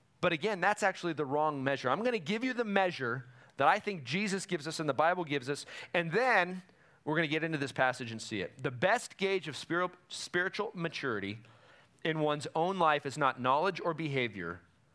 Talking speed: 200 wpm